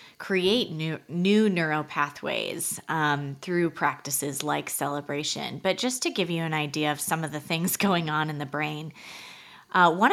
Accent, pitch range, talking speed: American, 150-180 Hz, 170 wpm